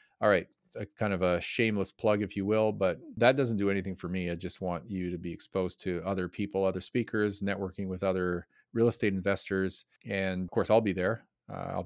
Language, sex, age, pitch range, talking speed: English, male, 40-59, 95-115 Hz, 220 wpm